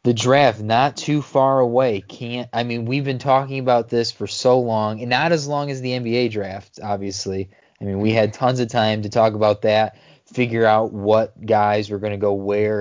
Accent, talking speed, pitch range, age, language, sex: American, 215 wpm, 110-130 Hz, 20-39, English, male